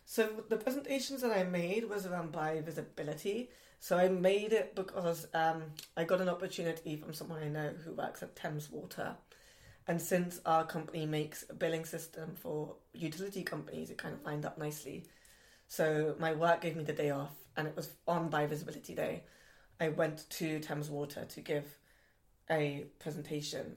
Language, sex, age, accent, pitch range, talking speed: English, female, 20-39, British, 150-175 Hz, 170 wpm